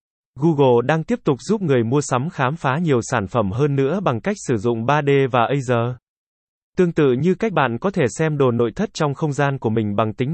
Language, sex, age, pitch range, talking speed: Vietnamese, male, 20-39, 125-155 Hz, 230 wpm